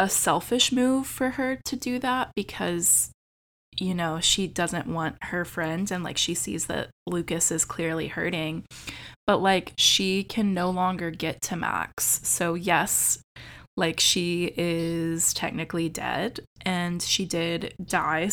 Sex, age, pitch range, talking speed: female, 20-39, 165-195 Hz, 145 wpm